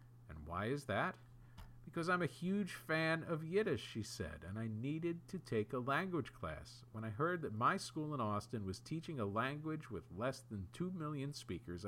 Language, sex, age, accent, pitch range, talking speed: English, male, 50-69, American, 110-145 Hz, 190 wpm